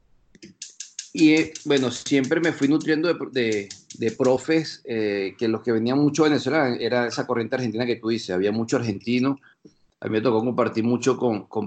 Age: 40-59